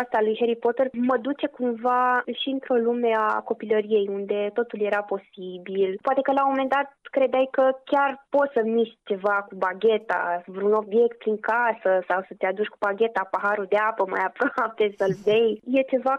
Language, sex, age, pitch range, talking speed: Romanian, female, 20-39, 205-250 Hz, 185 wpm